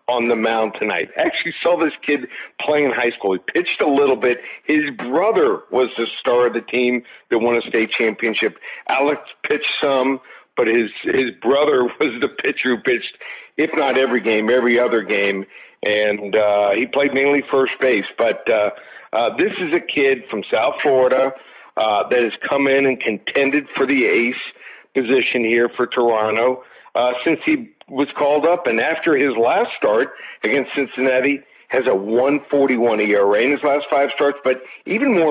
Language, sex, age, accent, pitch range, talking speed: English, male, 50-69, American, 120-145 Hz, 180 wpm